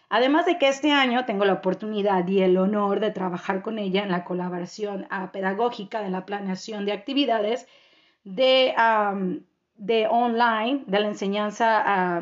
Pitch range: 205-270 Hz